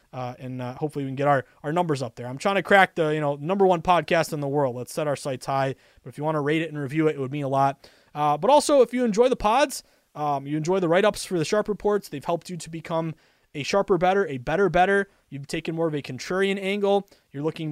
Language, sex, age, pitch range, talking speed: English, male, 20-39, 145-195 Hz, 280 wpm